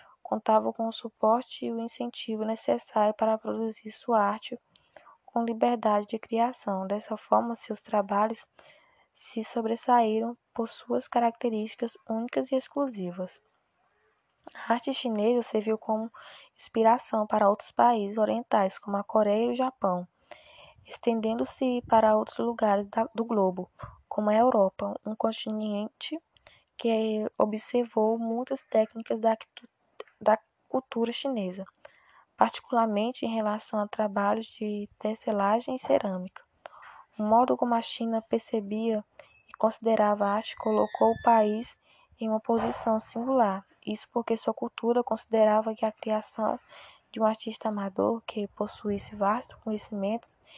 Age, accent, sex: 10-29, Brazilian, female